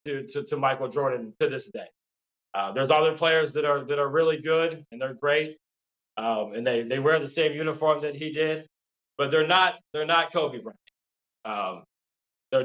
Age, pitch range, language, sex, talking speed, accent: 20-39, 135-165 Hz, English, male, 195 wpm, American